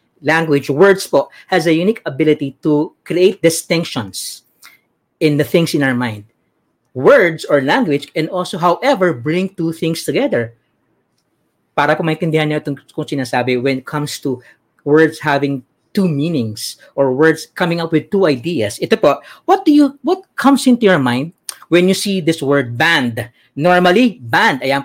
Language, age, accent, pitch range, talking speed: English, 40-59, Filipino, 135-190 Hz, 155 wpm